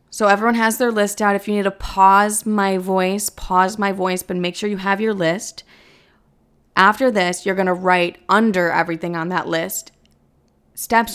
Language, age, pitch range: English, 20-39, 185-235 Hz